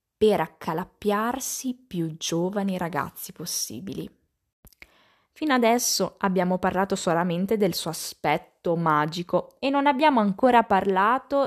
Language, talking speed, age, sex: Italian, 105 wpm, 20-39, female